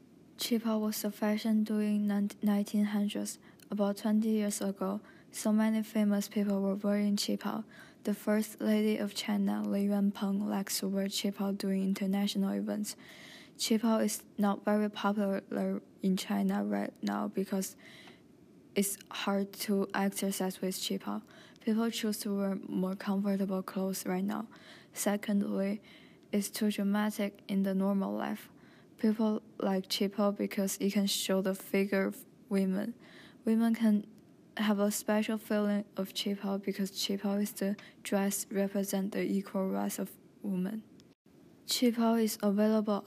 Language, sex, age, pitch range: English, female, 10-29, 195-210 Hz